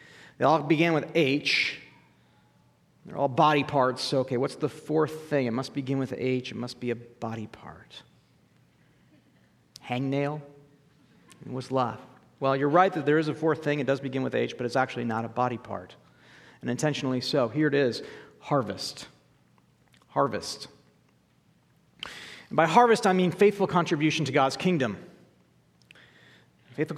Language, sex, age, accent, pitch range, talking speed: English, male, 40-59, American, 130-165 Hz, 155 wpm